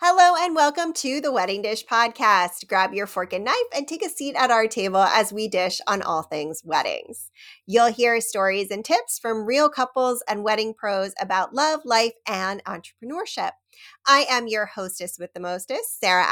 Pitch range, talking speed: 190-240 Hz, 190 wpm